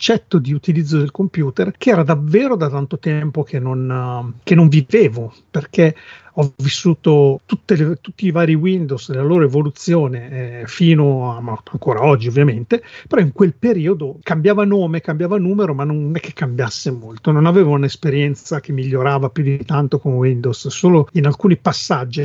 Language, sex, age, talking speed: Italian, male, 40-59, 160 wpm